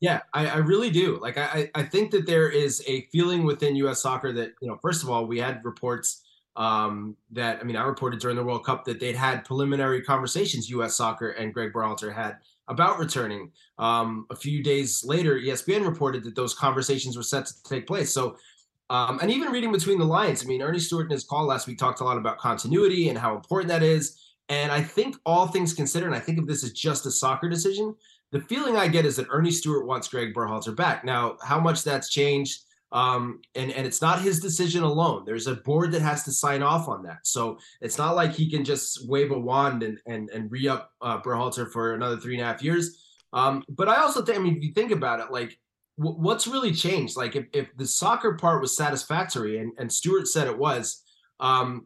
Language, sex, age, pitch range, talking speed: English, male, 20-39, 125-160 Hz, 230 wpm